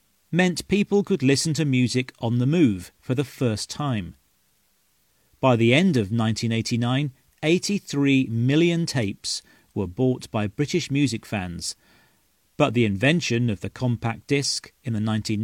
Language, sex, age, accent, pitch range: Chinese, male, 40-59, British, 110-150 Hz